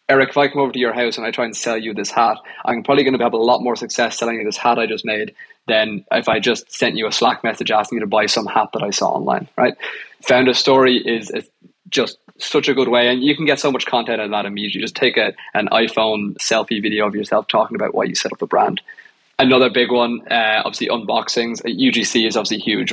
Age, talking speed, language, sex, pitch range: 20-39, 265 wpm, English, male, 110-130 Hz